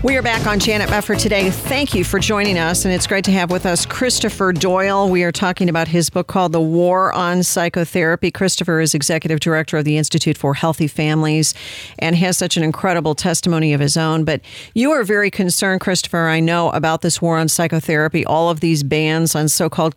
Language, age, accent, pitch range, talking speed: English, 50-69, American, 160-195 Hz, 215 wpm